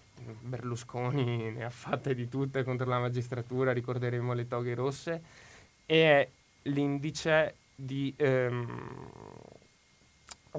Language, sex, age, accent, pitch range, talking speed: Italian, male, 20-39, native, 125-140 Hz, 100 wpm